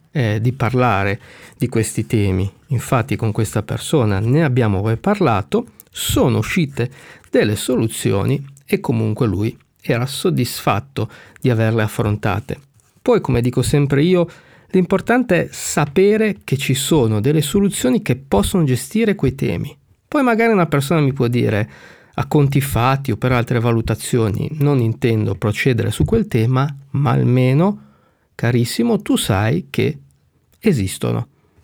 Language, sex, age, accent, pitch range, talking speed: Italian, male, 50-69, native, 115-155 Hz, 135 wpm